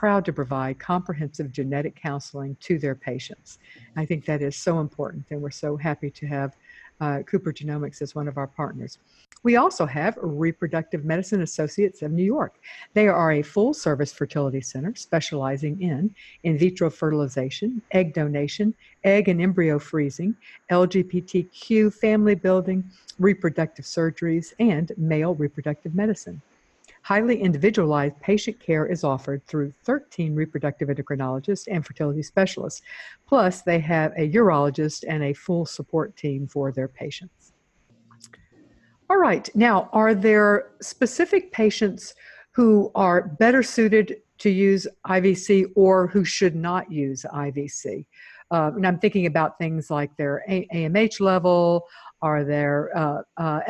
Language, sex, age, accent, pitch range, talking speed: English, female, 50-69, American, 145-195 Hz, 135 wpm